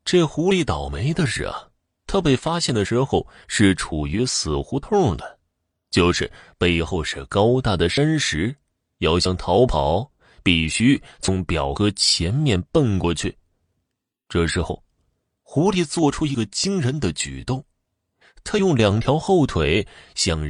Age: 30-49